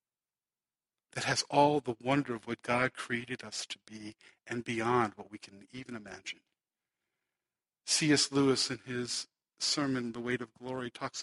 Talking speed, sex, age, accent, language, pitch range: 155 wpm, male, 50-69, American, English, 120-165 Hz